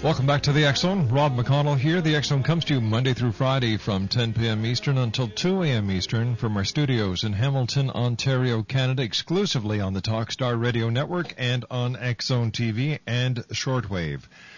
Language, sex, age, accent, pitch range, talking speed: English, male, 50-69, American, 105-130 Hz, 175 wpm